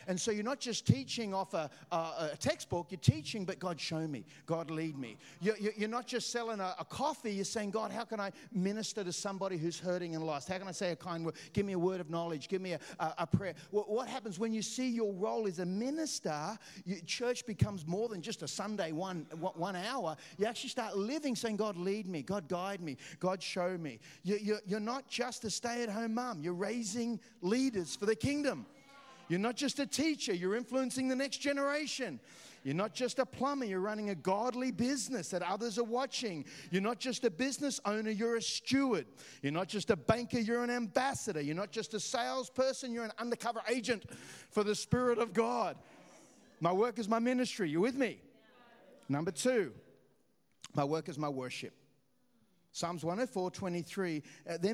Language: English